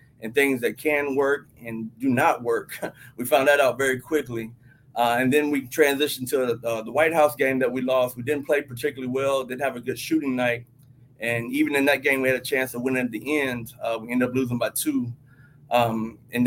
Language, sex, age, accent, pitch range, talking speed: English, male, 30-49, American, 125-140 Hz, 230 wpm